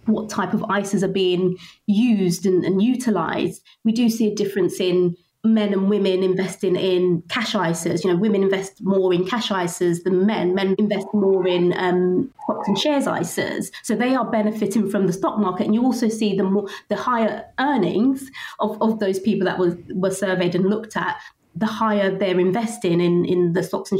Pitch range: 185-215 Hz